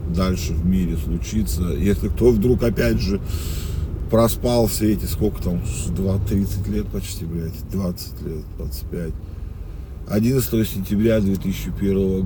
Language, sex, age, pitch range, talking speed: Russian, male, 40-59, 85-100 Hz, 115 wpm